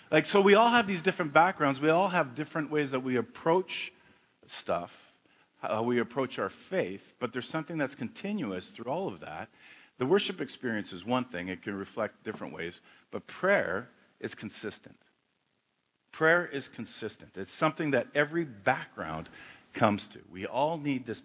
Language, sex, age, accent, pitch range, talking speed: English, male, 50-69, American, 115-160 Hz, 170 wpm